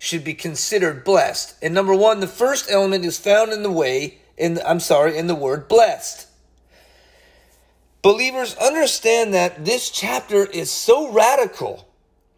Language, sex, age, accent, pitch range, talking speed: English, male, 40-59, American, 155-205 Hz, 145 wpm